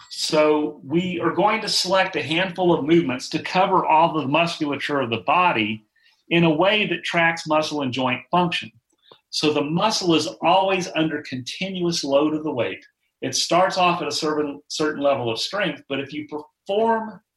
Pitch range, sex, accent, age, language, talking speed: 125-170 Hz, male, American, 40-59, English, 175 wpm